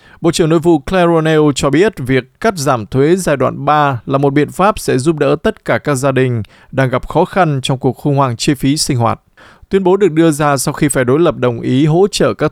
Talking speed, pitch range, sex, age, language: 255 wpm, 130-170 Hz, male, 20-39, Vietnamese